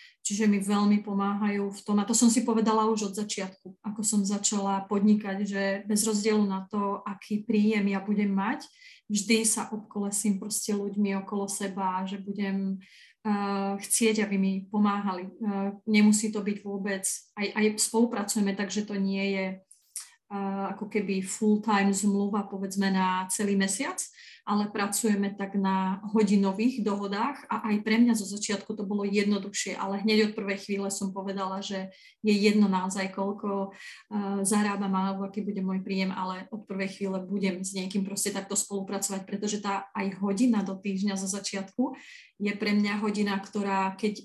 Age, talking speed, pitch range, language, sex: 30-49, 160 wpm, 195-215 Hz, Slovak, female